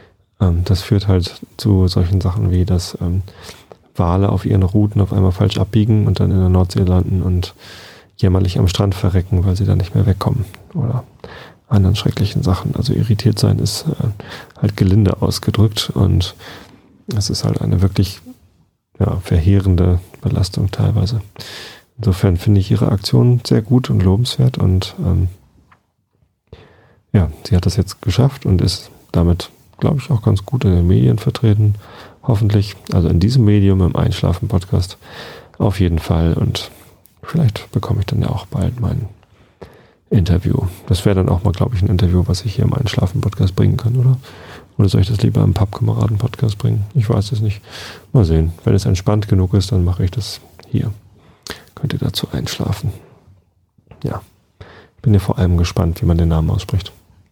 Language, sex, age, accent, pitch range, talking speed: German, male, 30-49, German, 95-115 Hz, 165 wpm